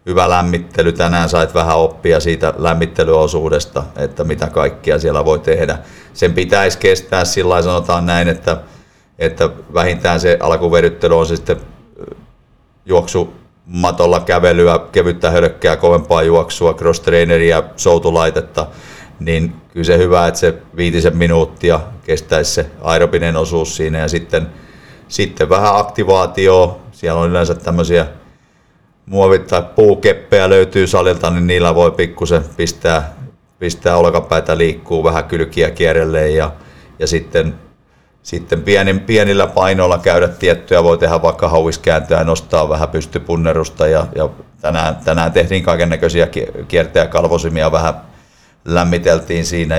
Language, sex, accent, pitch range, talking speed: Finnish, male, native, 85-95 Hz, 125 wpm